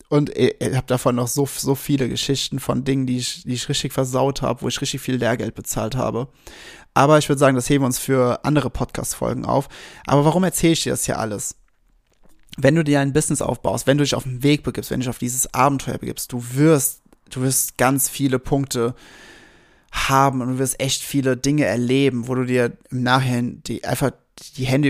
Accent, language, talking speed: German, German, 215 wpm